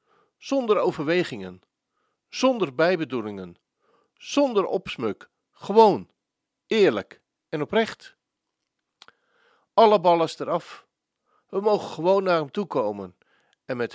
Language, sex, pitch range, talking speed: Dutch, male, 155-210 Hz, 95 wpm